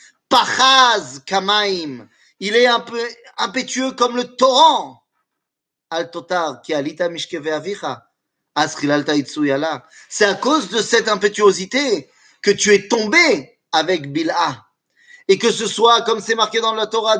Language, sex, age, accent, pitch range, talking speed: French, male, 30-49, French, 180-250 Hz, 115 wpm